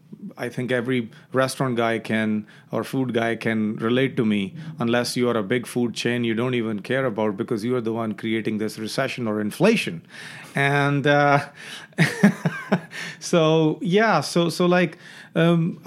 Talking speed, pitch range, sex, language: 165 wpm, 125-165 Hz, male, English